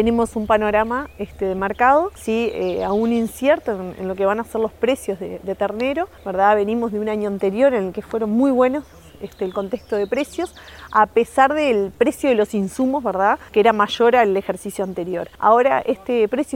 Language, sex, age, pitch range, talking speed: Spanish, female, 20-39, 205-265 Hz, 205 wpm